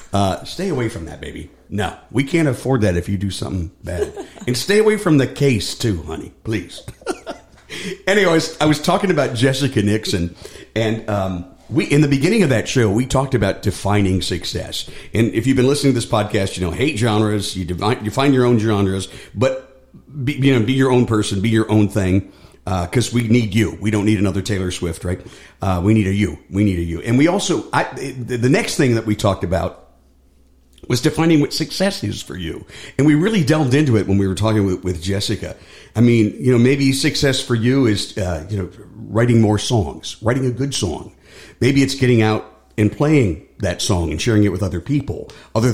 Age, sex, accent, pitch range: 50-69, male, American, 100-130 Hz